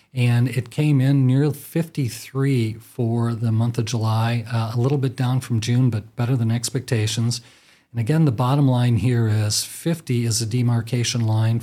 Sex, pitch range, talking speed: male, 115-140 Hz, 175 wpm